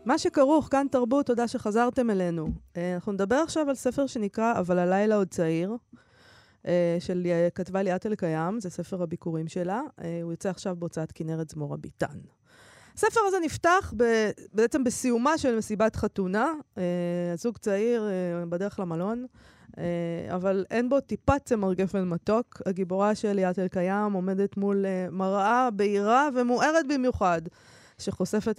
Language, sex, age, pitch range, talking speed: Hebrew, female, 20-39, 175-235 Hz, 130 wpm